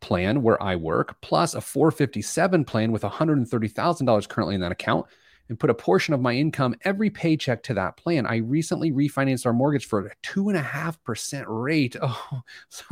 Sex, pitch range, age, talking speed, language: male, 110-150 Hz, 30-49, 190 wpm, English